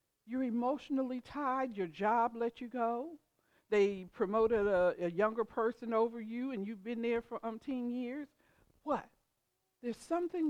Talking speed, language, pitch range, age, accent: 150 wpm, English, 175-240 Hz, 60-79, American